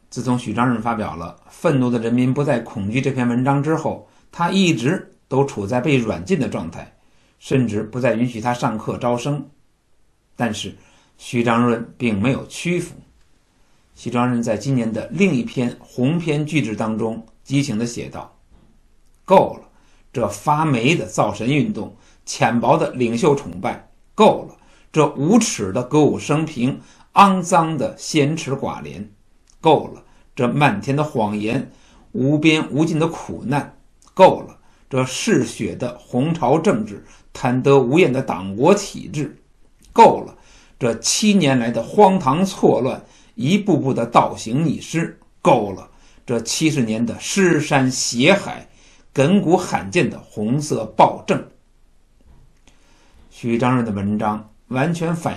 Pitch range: 115-150 Hz